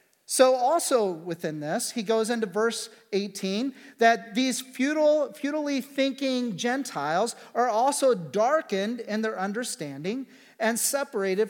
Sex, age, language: male, 40-59, English